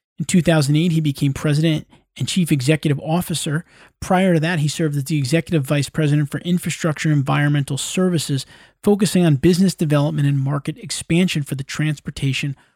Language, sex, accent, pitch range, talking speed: English, male, American, 135-160 Hz, 155 wpm